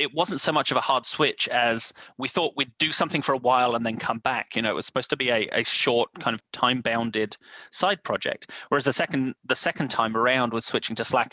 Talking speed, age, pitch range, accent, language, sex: 250 wpm, 30-49, 115-135 Hz, British, English, male